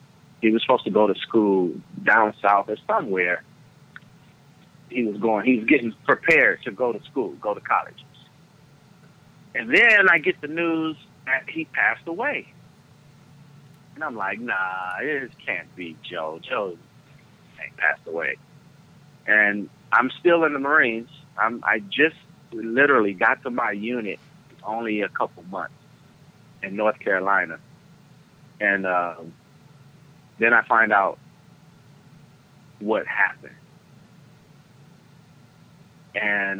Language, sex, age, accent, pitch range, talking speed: English, male, 30-49, American, 110-150 Hz, 125 wpm